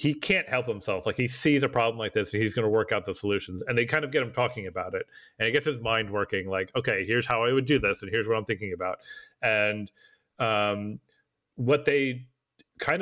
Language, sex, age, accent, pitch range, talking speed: English, male, 40-59, American, 115-140 Hz, 240 wpm